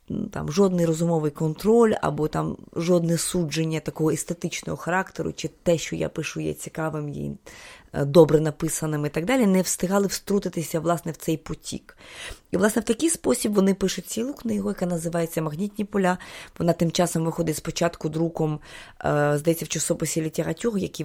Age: 20-39